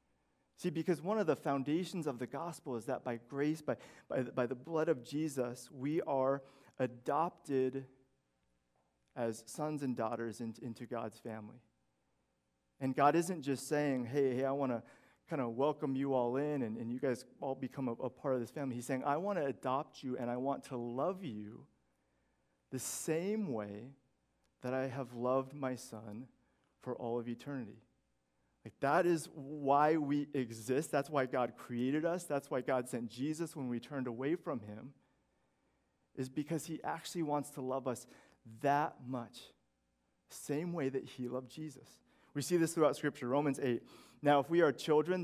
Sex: male